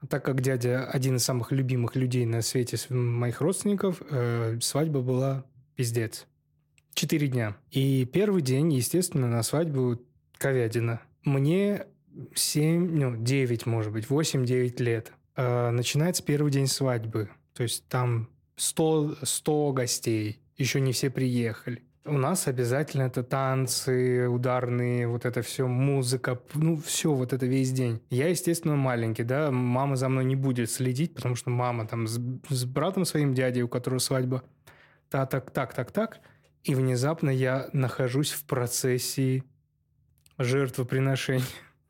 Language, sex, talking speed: Russian, male, 130 wpm